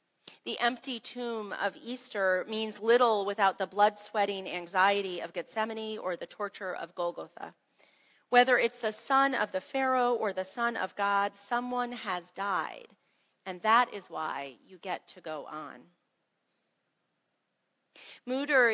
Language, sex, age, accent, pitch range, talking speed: English, female, 40-59, American, 190-245 Hz, 140 wpm